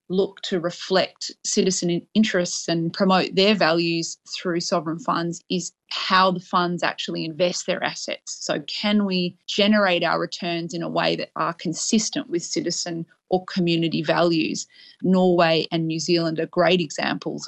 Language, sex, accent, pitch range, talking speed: English, female, Australian, 170-190 Hz, 150 wpm